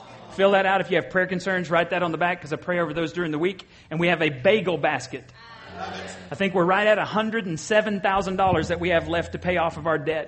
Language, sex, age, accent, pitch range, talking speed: English, male, 40-59, American, 155-195 Hz, 250 wpm